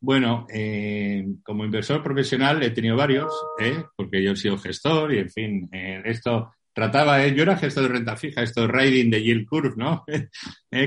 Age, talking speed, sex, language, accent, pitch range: 60-79, 195 wpm, male, Spanish, Spanish, 110-140 Hz